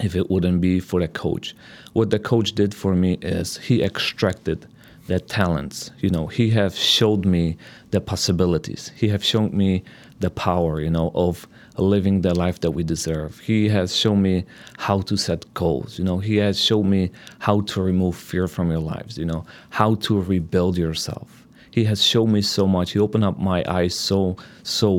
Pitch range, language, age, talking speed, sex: 90-105 Hz, English, 30-49, 195 wpm, male